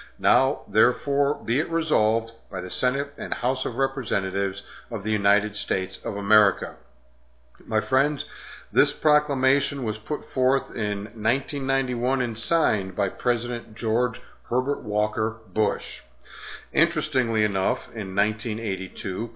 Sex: male